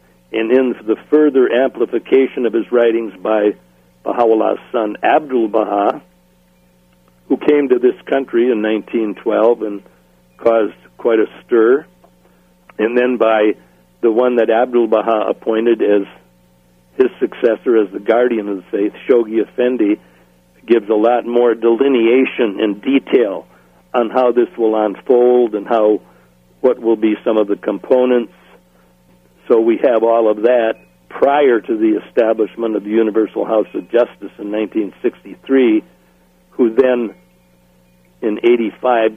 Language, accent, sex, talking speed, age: English, American, male, 130 wpm, 60-79